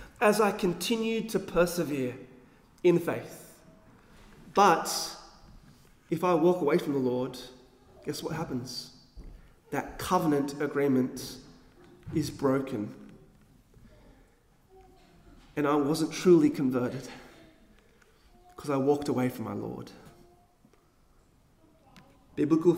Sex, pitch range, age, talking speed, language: male, 135-195 Hz, 30-49, 95 wpm, English